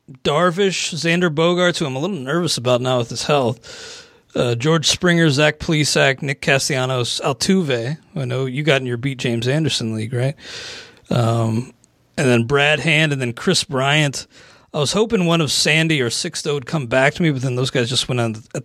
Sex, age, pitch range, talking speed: male, 30-49, 125-165 Hz, 205 wpm